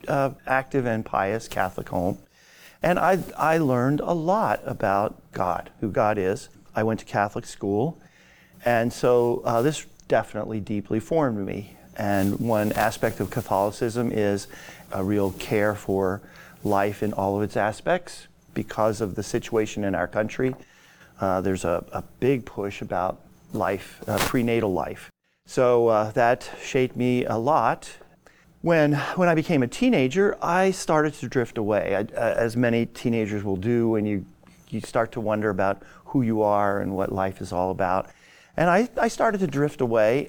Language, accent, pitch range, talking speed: English, American, 100-135 Hz, 165 wpm